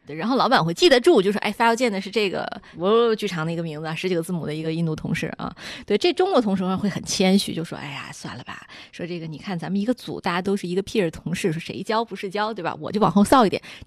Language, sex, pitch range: Chinese, female, 180-235 Hz